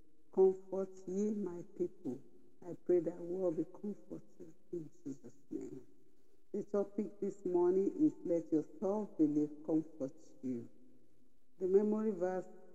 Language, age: English, 60-79